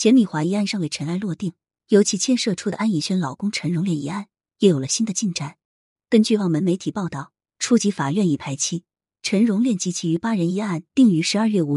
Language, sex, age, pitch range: Chinese, female, 30-49, 155-215 Hz